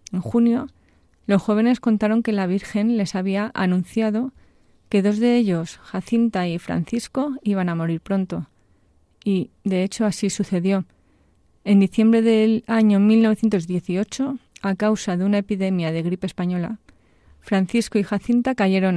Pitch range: 180-220 Hz